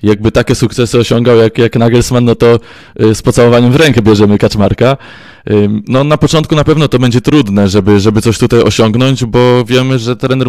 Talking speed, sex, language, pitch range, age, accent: 185 wpm, male, Polish, 110-135 Hz, 20-39, native